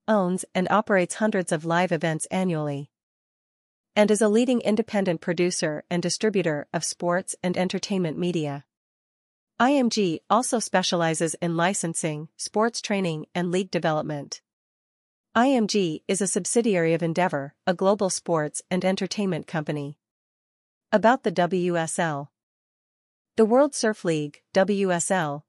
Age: 40-59